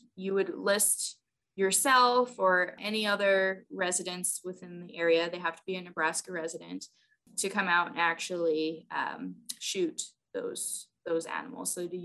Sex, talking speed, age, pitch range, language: female, 150 wpm, 20-39, 170-205 Hz, English